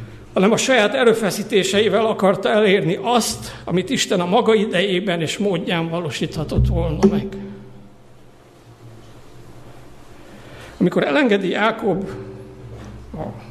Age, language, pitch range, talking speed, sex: 60-79, Hungarian, 160-220 Hz, 95 wpm, male